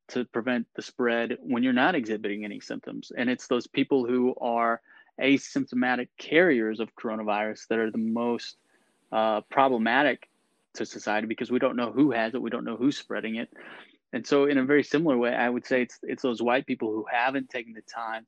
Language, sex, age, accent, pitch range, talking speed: English, male, 20-39, American, 115-140 Hz, 200 wpm